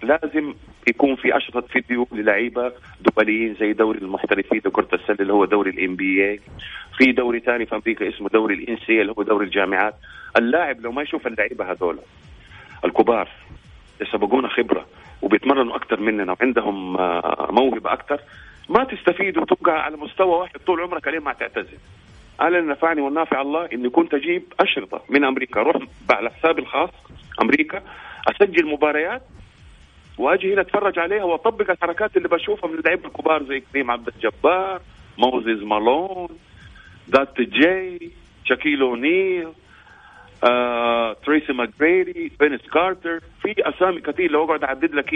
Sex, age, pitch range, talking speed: male, 40-59, 120-170 Hz, 140 wpm